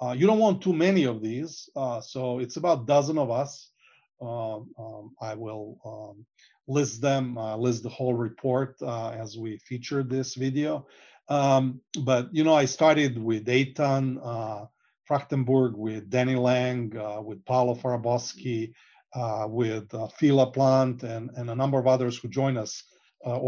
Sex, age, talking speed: male, 40-59, 170 wpm